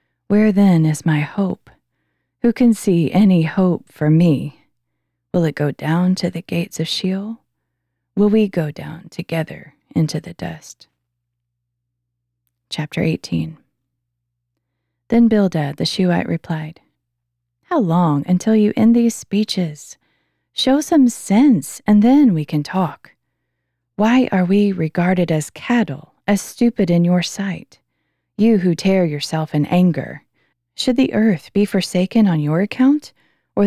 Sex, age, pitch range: female, 30-49, 155-210 Hz